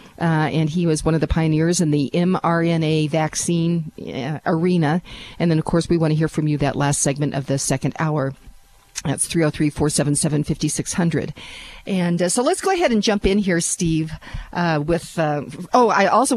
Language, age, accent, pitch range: English, 50-69, American, 155-185 Hz